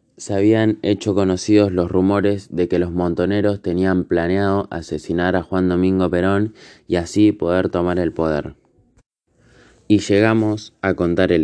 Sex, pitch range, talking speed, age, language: male, 85-100 Hz, 145 wpm, 20-39, Spanish